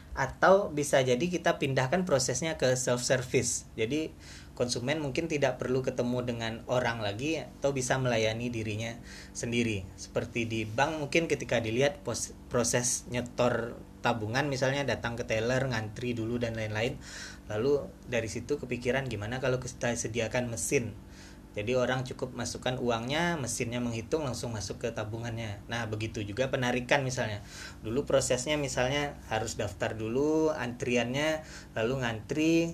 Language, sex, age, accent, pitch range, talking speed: Indonesian, male, 20-39, native, 110-135 Hz, 135 wpm